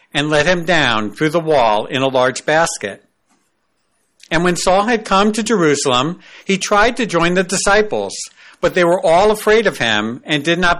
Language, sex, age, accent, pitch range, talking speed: English, male, 50-69, American, 145-190 Hz, 190 wpm